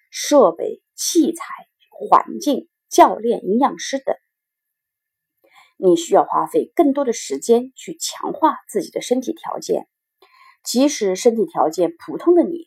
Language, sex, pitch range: Chinese, female, 240-375 Hz